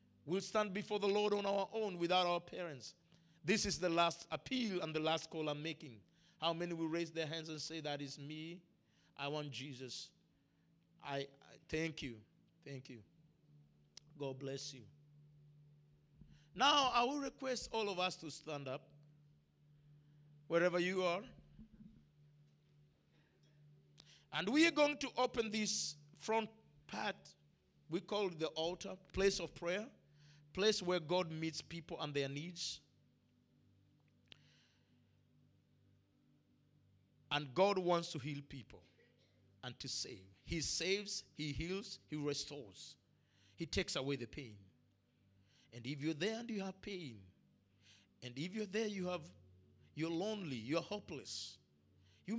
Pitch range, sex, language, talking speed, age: 135-180 Hz, male, English, 135 wpm, 50-69